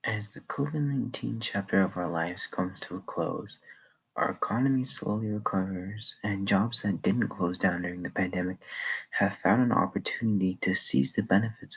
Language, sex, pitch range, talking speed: English, male, 95-105 Hz, 170 wpm